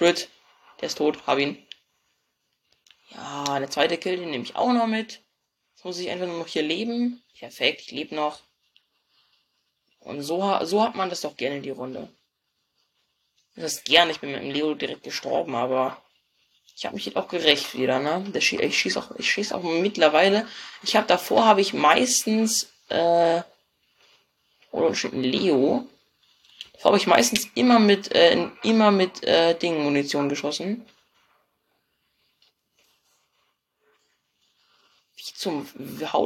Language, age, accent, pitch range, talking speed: German, 20-39, German, 145-195 Hz, 145 wpm